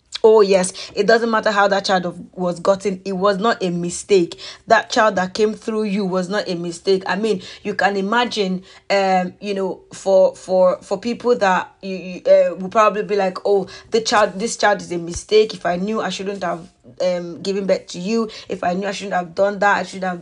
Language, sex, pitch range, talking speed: English, female, 185-215 Hz, 225 wpm